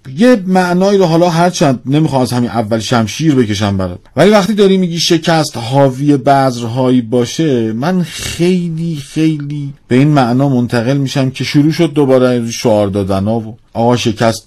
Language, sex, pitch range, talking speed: Persian, male, 115-155 Hz, 160 wpm